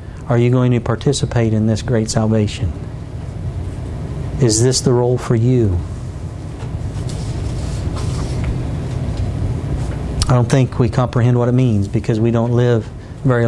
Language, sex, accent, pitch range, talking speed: English, male, American, 115-130 Hz, 125 wpm